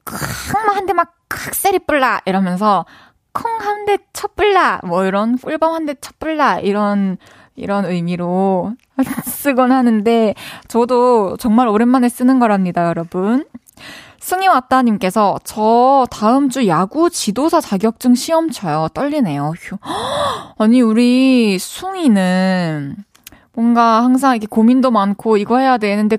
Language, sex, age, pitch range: Korean, female, 20-39, 190-265 Hz